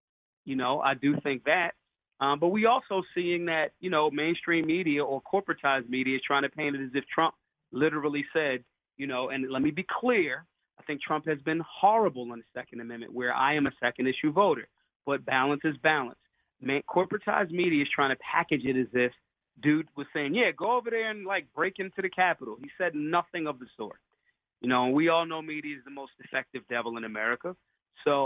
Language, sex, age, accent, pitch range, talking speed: English, male, 30-49, American, 135-165 Hz, 215 wpm